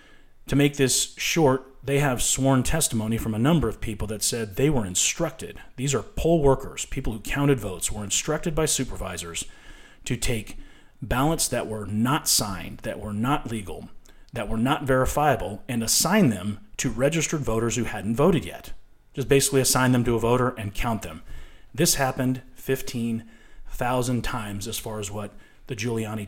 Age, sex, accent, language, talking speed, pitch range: 30-49, male, American, English, 170 wpm, 110-130 Hz